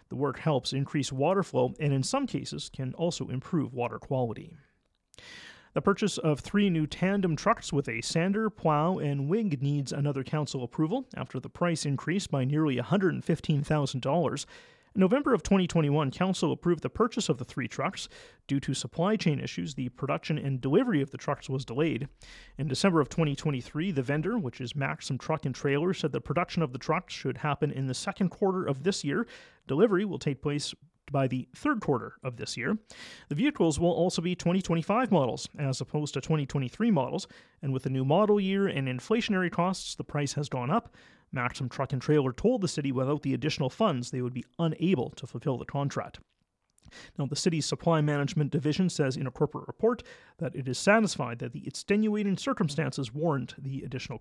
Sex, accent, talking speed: male, American, 185 wpm